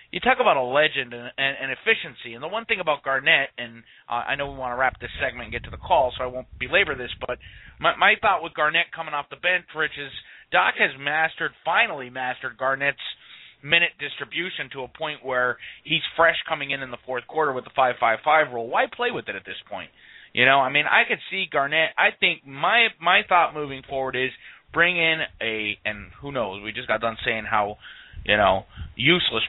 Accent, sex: American, male